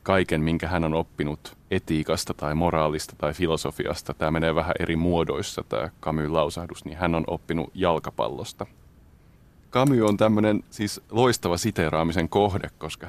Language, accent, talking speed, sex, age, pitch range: Finnish, native, 140 wpm, male, 30-49, 80-95 Hz